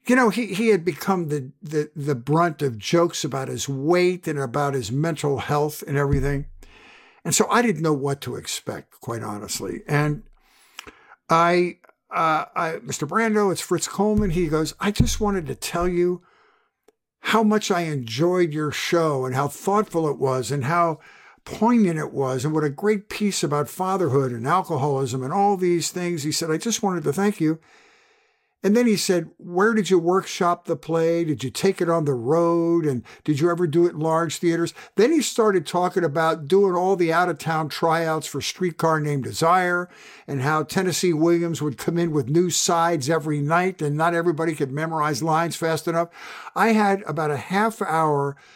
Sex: male